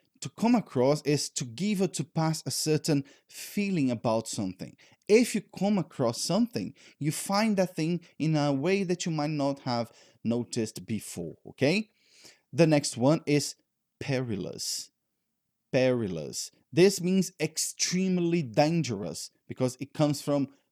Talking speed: 140 wpm